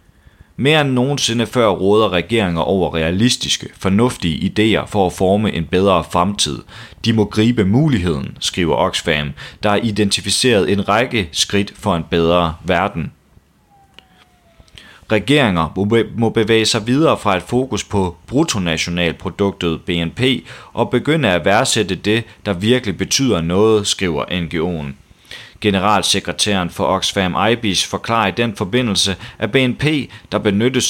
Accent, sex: native, male